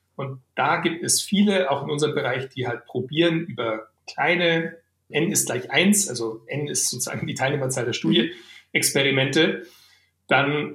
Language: German